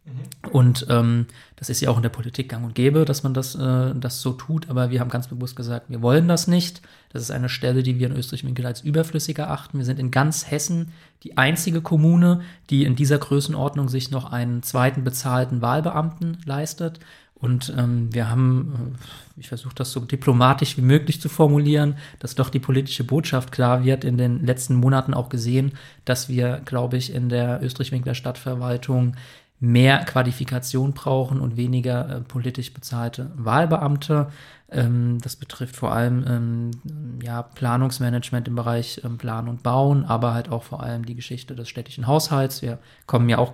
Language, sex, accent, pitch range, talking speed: German, male, German, 120-140 Hz, 180 wpm